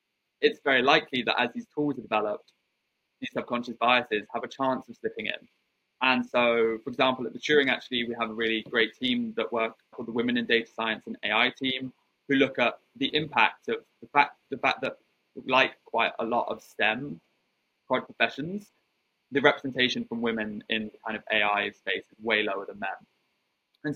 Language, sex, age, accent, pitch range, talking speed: English, male, 20-39, British, 110-130 Hz, 195 wpm